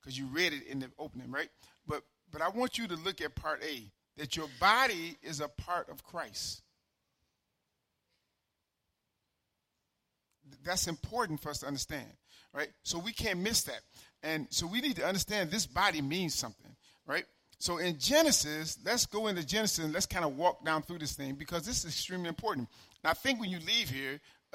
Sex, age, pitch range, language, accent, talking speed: male, 40-59, 135-170 Hz, English, American, 195 wpm